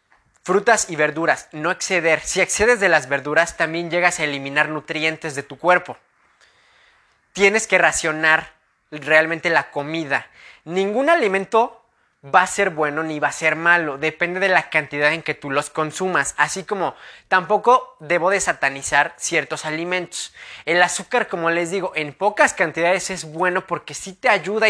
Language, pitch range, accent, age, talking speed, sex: English, 155-205 Hz, Mexican, 20-39, 160 wpm, male